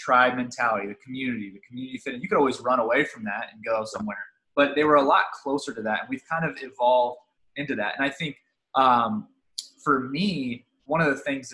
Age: 20-39